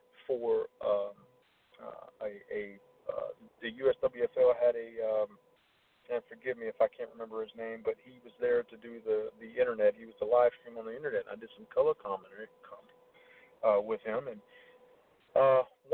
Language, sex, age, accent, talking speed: English, male, 40-59, American, 185 wpm